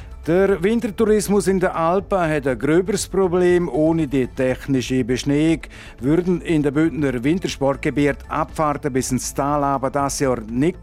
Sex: male